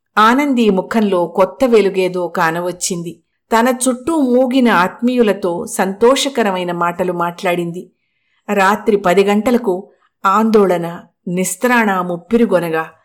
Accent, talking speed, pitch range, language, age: native, 85 wpm, 180-220 Hz, Telugu, 50-69